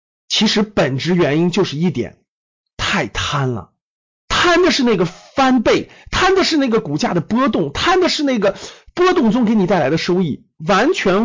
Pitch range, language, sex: 175-255 Hz, Chinese, male